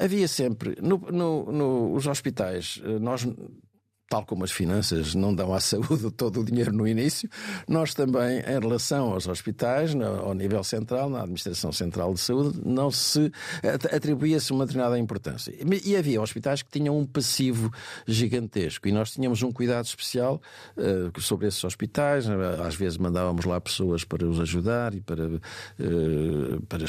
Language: Portuguese